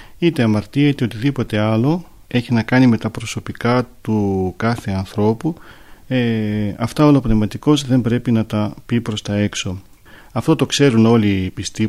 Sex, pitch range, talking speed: male, 105-135 Hz, 155 wpm